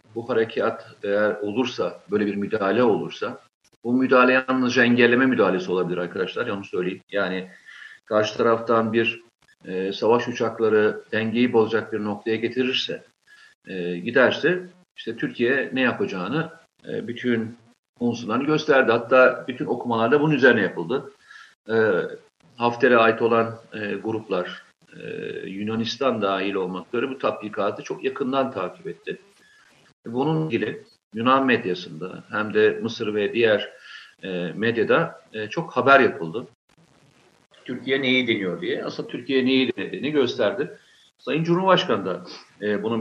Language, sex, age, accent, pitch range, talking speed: Turkish, male, 50-69, native, 105-140 Hz, 125 wpm